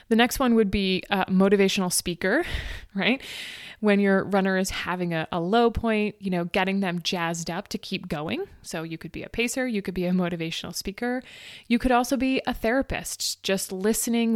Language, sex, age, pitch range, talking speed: English, female, 20-39, 180-225 Hz, 195 wpm